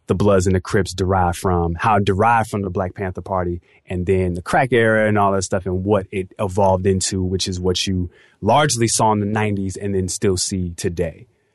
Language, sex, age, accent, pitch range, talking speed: English, male, 20-39, American, 95-130 Hz, 220 wpm